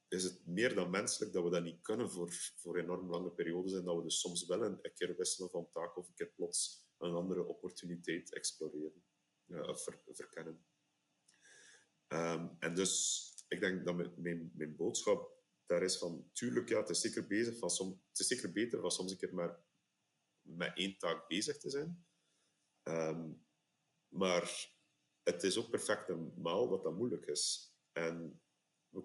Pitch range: 85-100 Hz